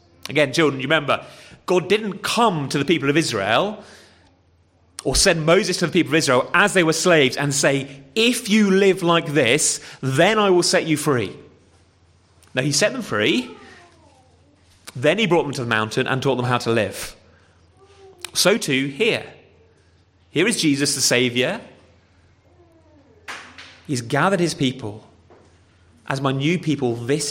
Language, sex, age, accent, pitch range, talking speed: English, male, 30-49, British, 115-170 Hz, 160 wpm